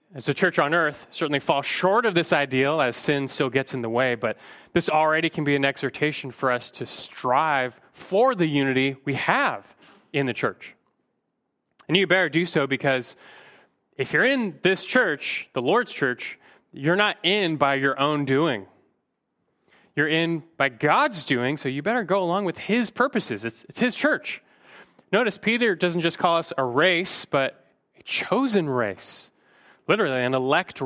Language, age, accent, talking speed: English, 30-49, American, 175 wpm